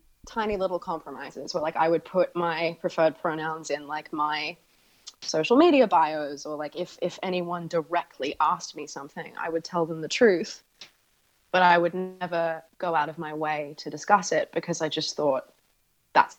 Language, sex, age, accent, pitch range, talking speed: English, female, 20-39, Australian, 150-180 Hz, 180 wpm